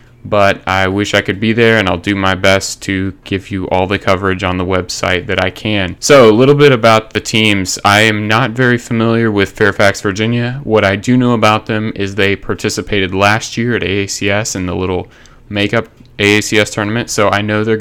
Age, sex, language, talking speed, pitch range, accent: 30-49, male, English, 210 wpm, 100-115 Hz, American